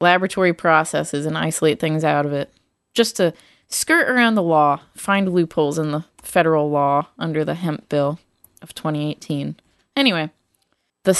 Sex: female